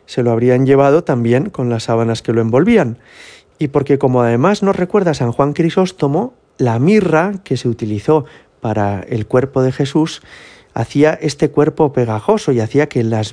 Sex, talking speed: male, 170 wpm